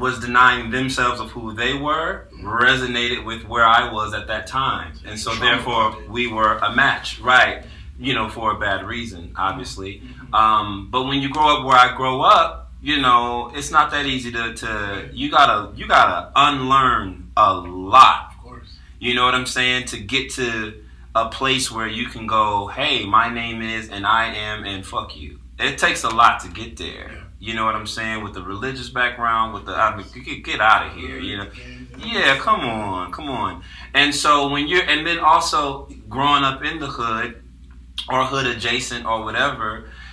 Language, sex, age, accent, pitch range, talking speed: English, male, 30-49, American, 105-135 Hz, 195 wpm